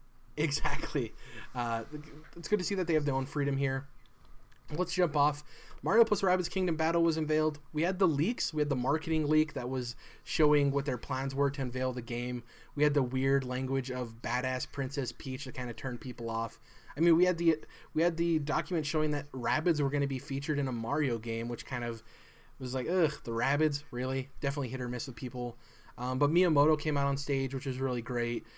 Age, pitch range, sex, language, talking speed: 20-39, 120-150 Hz, male, English, 215 wpm